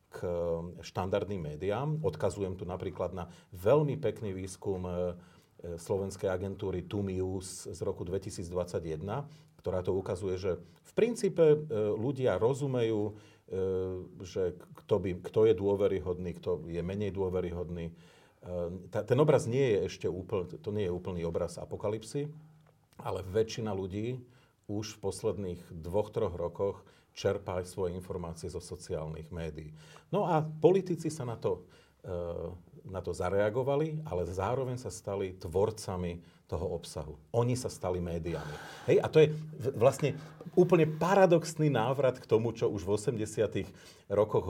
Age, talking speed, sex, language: 40-59, 130 wpm, male, Slovak